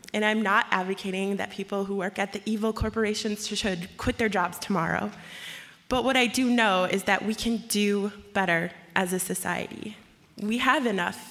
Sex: female